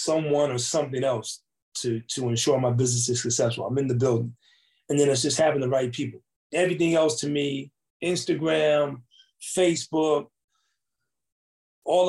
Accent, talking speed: American, 150 wpm